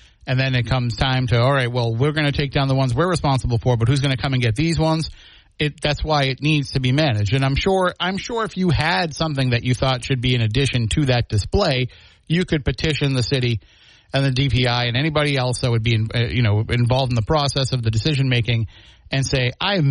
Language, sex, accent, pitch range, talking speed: English, male, American, 115-140 Hz, 250 wpm